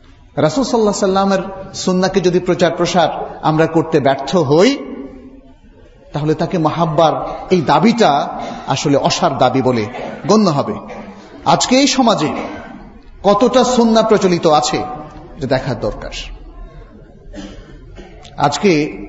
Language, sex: Bengali, male